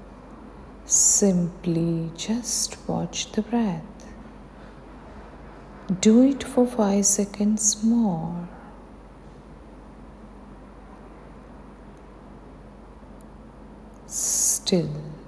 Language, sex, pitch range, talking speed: Hindi, female, 160-220 Hz, 45 wpm